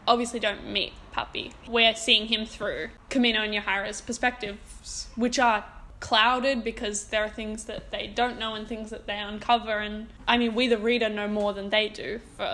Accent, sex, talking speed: Australian, female, 190 wpm